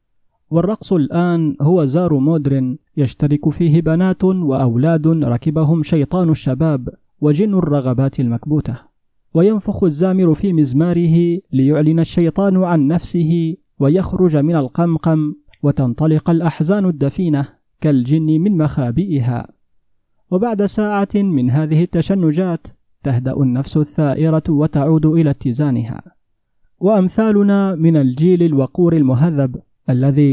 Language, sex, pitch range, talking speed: Arabic, male, 140-170 Hz, 95 wpm